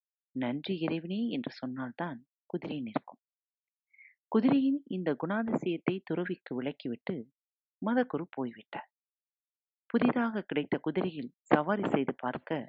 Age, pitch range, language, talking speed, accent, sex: 40-59, 130-210 Hz, Tamil, 90 wpm, native, female